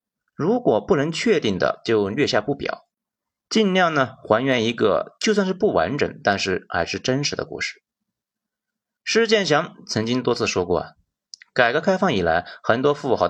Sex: male